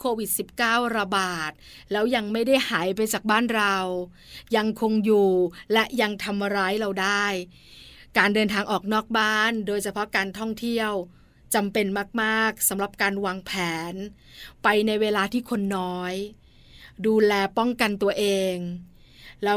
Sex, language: female, Thai